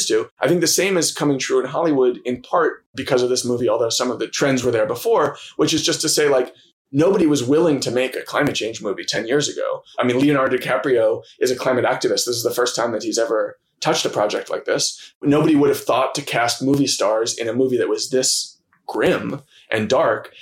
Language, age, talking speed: English, 20-39, 235 wpm